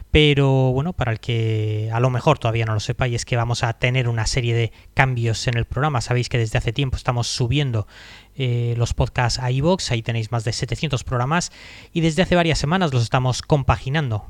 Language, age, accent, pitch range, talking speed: Spanish, 20-39, Spanish, 115-135 Hz, 215 wpm